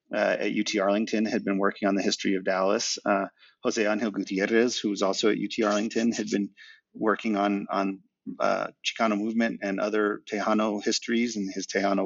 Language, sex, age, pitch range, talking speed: English, male, 30-49, 100-115 Hz, 185 wpm